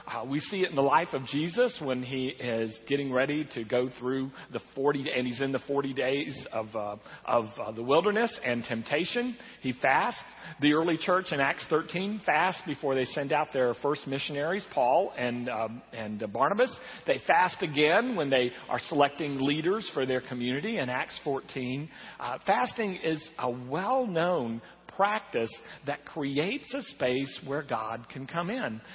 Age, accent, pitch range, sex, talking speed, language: 50-69, American, 130-180 Hz, male, 175 wpm, English